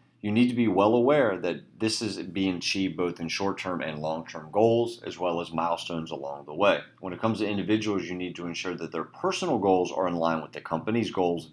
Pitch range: 80-105 Hz